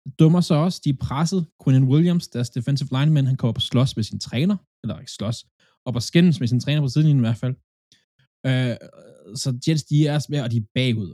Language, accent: Danish, native